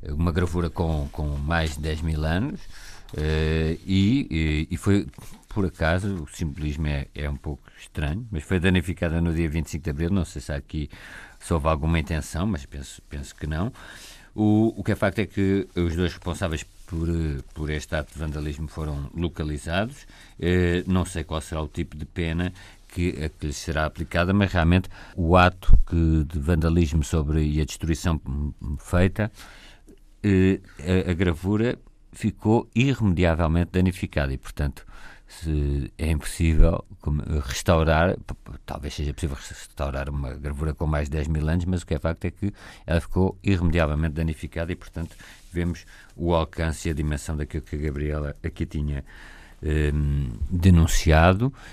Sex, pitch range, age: male, 75-90 Hz, 50-69